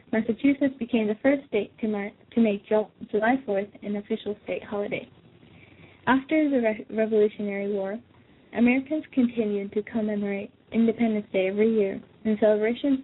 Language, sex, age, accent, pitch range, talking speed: English, female, 10-29, American, 210-240 Hz, 130 wpm